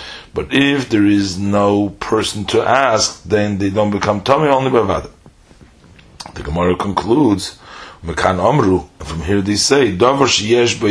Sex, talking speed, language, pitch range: male, 145 wpm, English, 100-110 Hz